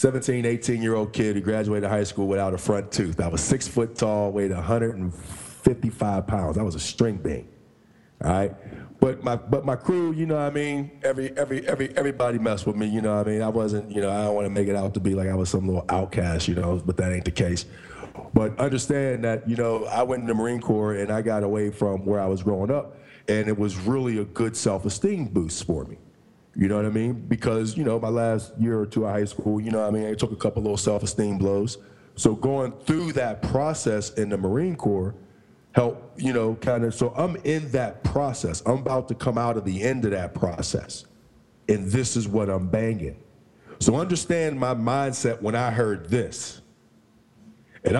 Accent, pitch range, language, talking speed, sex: American, 100-125 Hz, English, 225 wpm, male